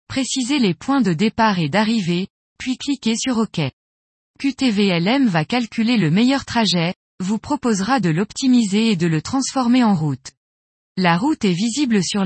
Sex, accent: female, French